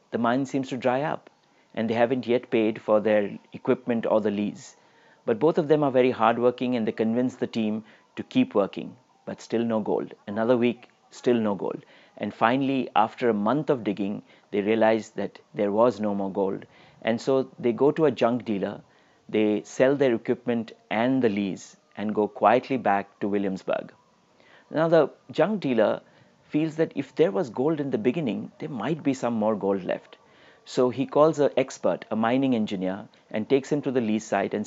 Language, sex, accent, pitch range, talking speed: English, male, Indian, 110-130 Hz, 195 wpm